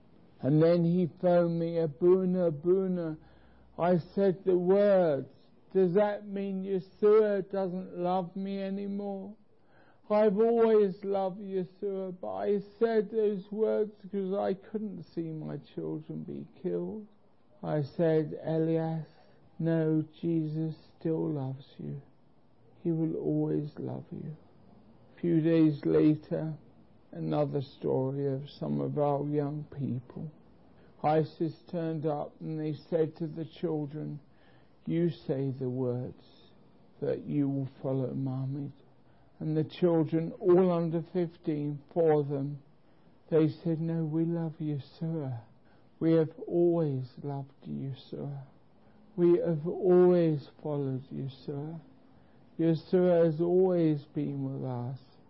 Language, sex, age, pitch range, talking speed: English, male, 60-79, 145-180 Hz, 125 wpm